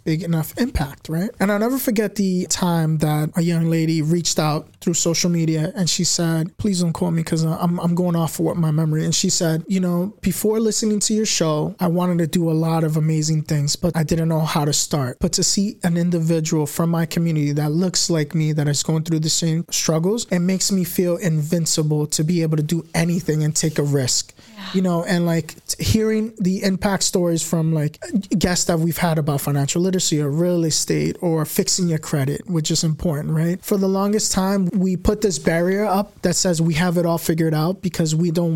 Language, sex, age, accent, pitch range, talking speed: English, male, 20-39, American, 160-185 Hz, 225 wpm